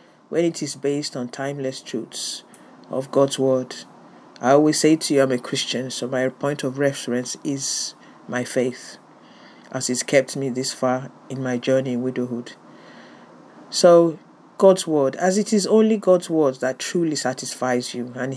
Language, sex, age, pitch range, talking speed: English, male, 50-69, 130-170 Hz, 165 wpm